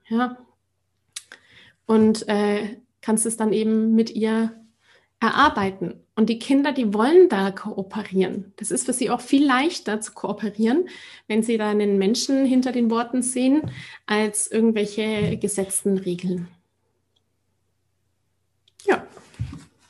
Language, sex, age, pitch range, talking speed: German, female, 30-49, 200-235 Hz, 120 wpm